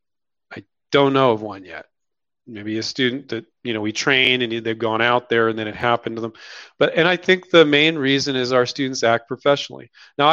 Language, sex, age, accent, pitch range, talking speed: English, male, 40-59, American, 120-150 Hz, 215 wpm